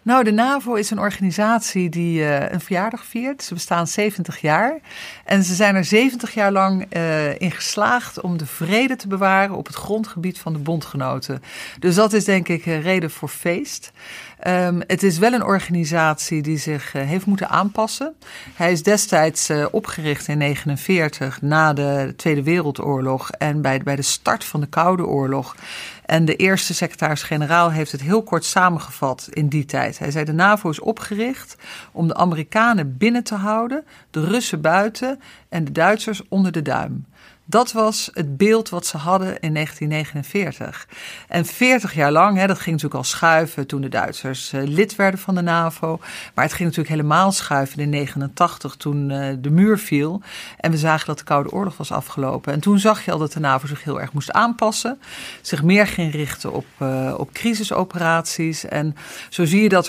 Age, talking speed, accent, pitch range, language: 50-69, 185 wpm, Dutch, 150-195 Hz, Dutch